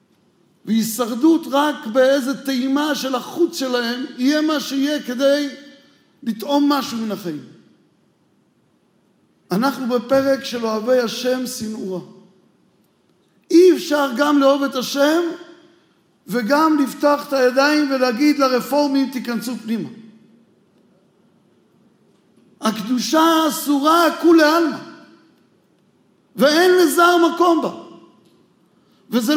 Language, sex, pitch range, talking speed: Hebrew, male, 240-300 Hz, 90 wpm